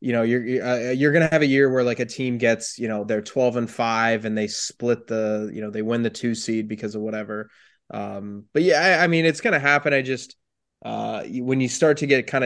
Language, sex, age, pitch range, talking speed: English, male, 20-39, 115-135 Hz, 260 wpm